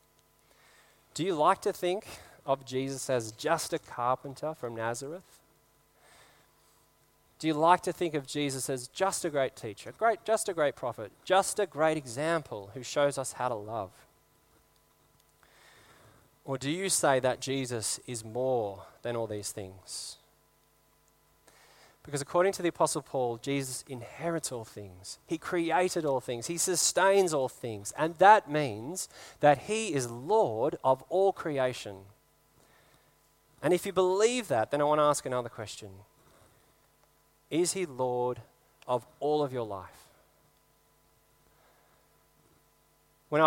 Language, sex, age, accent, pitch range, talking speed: English, male, 20-39, Australian, 125-165 Hz, 140 wpm